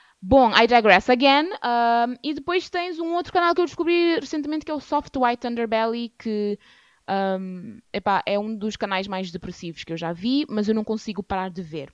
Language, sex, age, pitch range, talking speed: Portuguese, female, 20-39, 200-250 Hz, 205 wpm